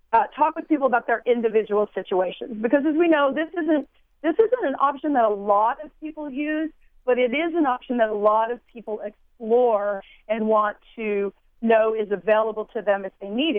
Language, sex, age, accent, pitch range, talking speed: English, female, 40-59, American, 210-275 Hz, 205 wpm